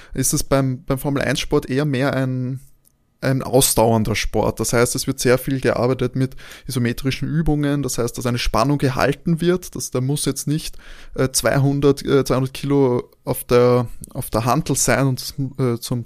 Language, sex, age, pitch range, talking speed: German, male, 20-39, 120-140 Hz, 170 wpm